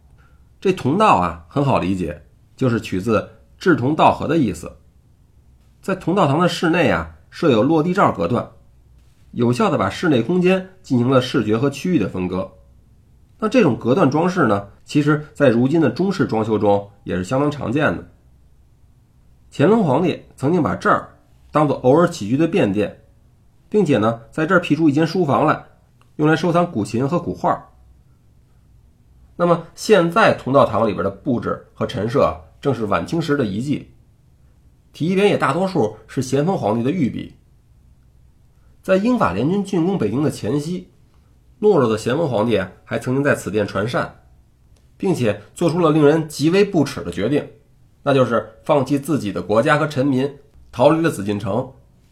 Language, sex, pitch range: Chinese, male, 105-160 Hz